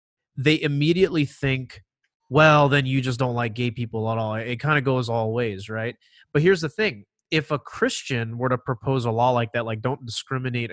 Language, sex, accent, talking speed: English, male, American, 205 wpm